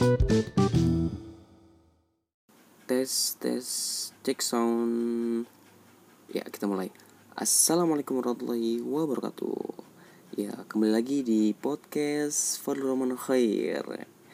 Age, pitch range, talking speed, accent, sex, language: 20-39, 105-125 Hz, 75 wpm, native, male, Indonesian